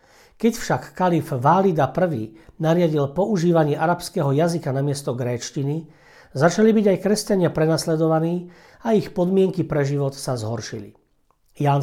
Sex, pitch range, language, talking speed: male, 135-170 Hz, Slovak, 125 wpm